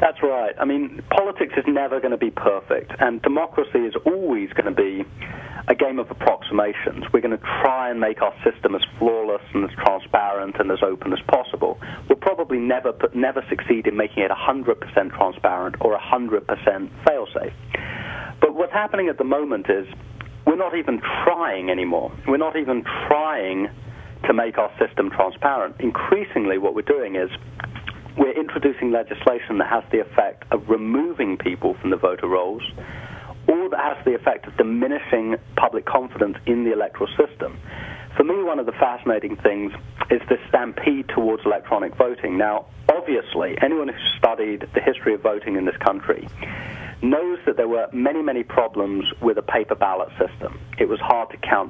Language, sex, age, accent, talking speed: English, male, 40-59, British, 175 wpm